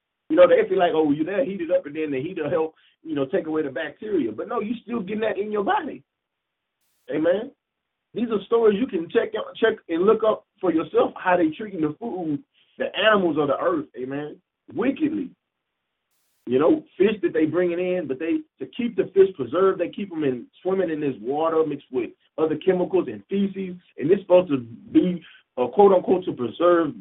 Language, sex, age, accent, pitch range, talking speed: English, male, 30-49, American, 155-240 Hz, 215 wpm